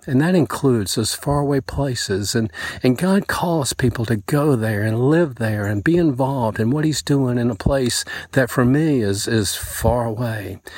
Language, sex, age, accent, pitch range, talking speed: English, male, 50-69, American, 110-140 Hz, 190 wpm